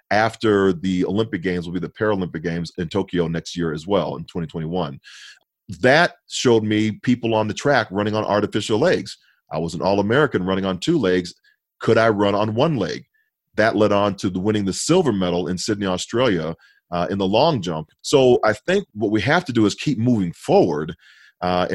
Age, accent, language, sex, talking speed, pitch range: 40-59, American, English, male, 200 wpm, 90-115 Hz